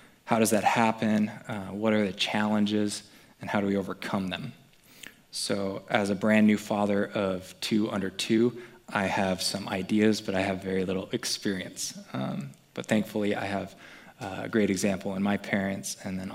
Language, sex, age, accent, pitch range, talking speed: English, male, 20-39, American, 95-110 Hz, 175 wpm